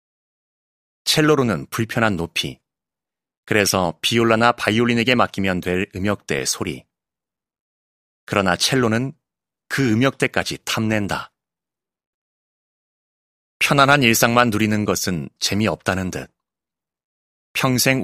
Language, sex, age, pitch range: Korean, male, 30-49, 95-125 Hz